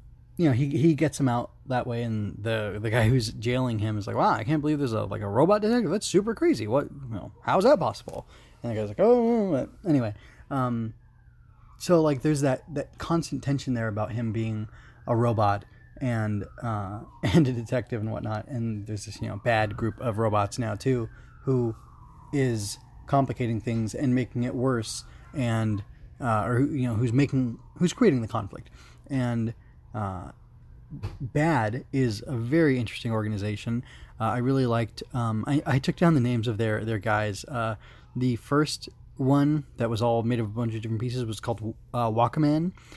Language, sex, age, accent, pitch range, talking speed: English, male, 20-39, American, 110-140 Hz, 190 wpm